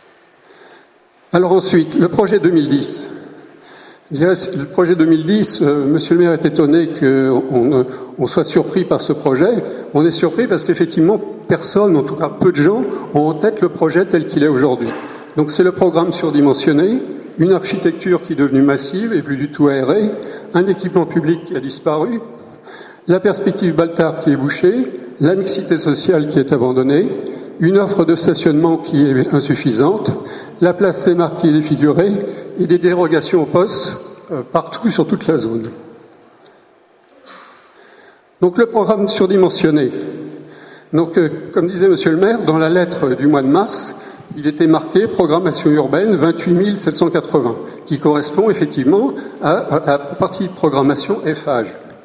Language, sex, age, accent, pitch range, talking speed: French, male, 60-79, French, 150-185 Hz, 155 wpm